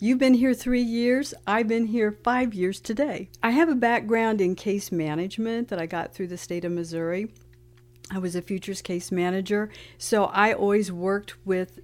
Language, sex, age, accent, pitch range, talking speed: English, female, 60-79, American, 175-210 Hz, 190 wpm